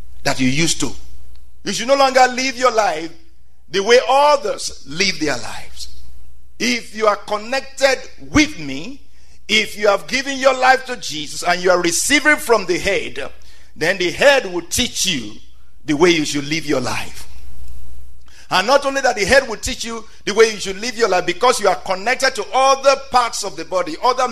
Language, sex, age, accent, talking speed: English, male, 50-69, Nigerian, 190 wpm